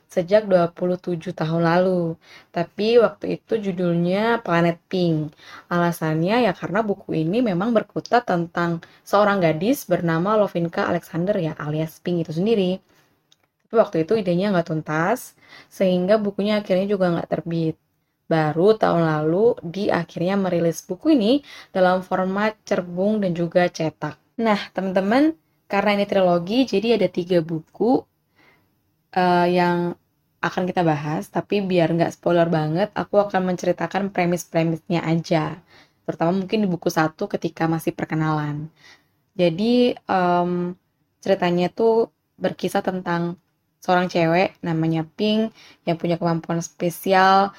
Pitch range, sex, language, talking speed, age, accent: 165-200 Hz, female, Indonesian, 125 wpm, 10-29, native